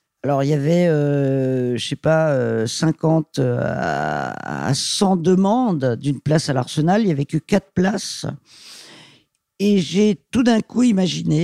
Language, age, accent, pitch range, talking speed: French, 50-69, French, 145-195 Hz, 145 wpm